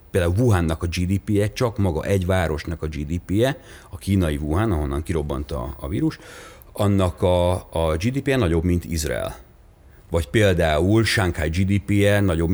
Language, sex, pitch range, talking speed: Hungarian, male, 80-100 Hz, 140 wpm